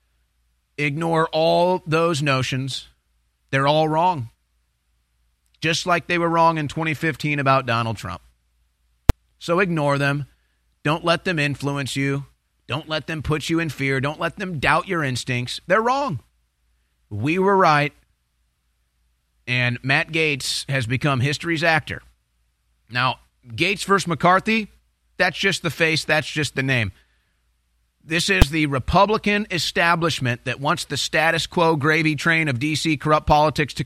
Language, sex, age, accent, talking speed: English, male, 30-49, American, 140 wpm